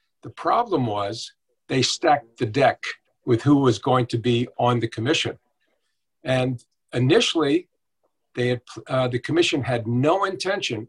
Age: 50-69